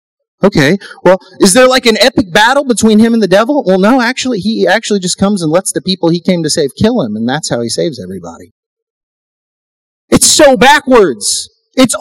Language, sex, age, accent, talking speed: English, male, 30-49, American, 200 wpm